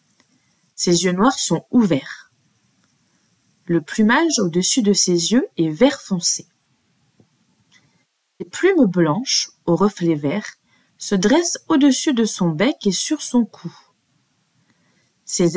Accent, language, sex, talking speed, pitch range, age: French, French, female, 120 wpm, 175-245 Hz, 20-39